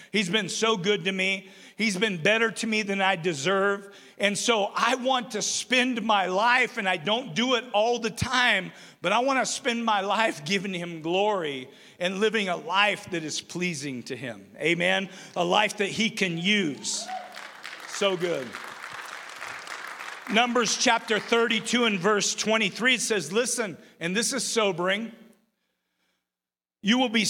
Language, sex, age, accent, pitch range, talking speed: English, male, 50-69, American, 170-220 Hz, 160 wpm